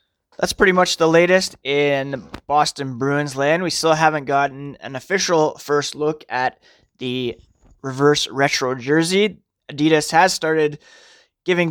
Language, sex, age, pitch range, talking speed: English, male, 20-39, 135-170 Hz, 135 wpm